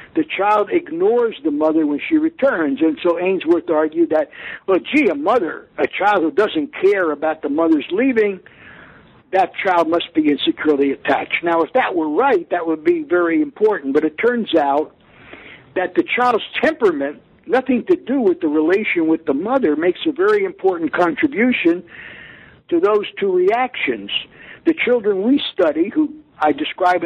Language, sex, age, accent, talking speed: English, male, 60-79, American, 165 wpm